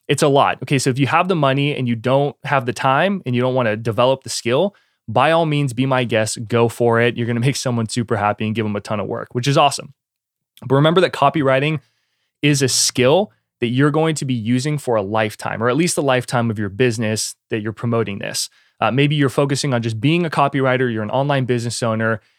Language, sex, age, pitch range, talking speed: English, male, 20-39, 120-140 Hz, 240 wpm